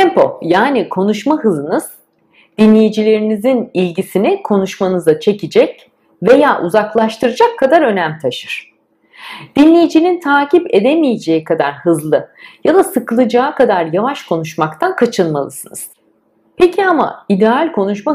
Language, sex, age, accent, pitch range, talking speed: Turkish, female, 50-69, native, 175-285 Hz, 95 wpm